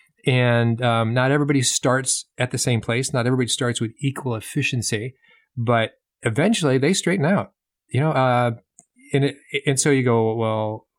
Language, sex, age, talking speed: English, male, 40-59, 165 wpm